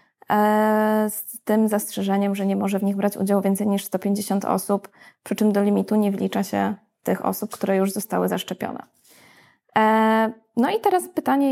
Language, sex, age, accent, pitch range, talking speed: Polish, female, 20-39, native, 195-230 Hz, 160 wpm